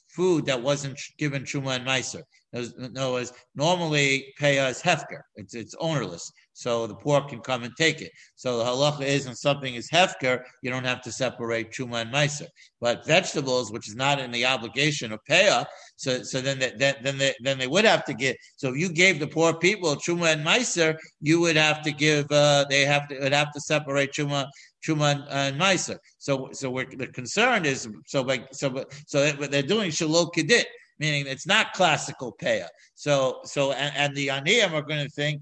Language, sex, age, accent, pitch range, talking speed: English, male, 60-79, American, 130-150 Hz, 205 wpm